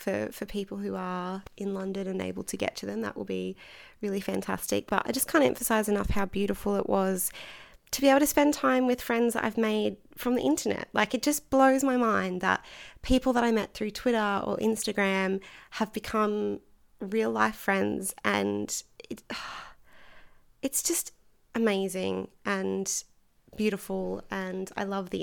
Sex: female